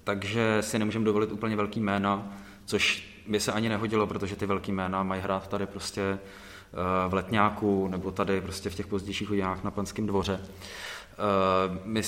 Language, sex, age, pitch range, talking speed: Czech, male, 20-39, 90-105 Hz, 165 wpm